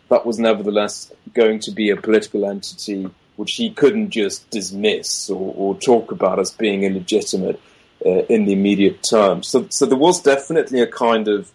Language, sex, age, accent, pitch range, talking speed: English, male, 30-49, British, 95-135 Hz, 175 wpm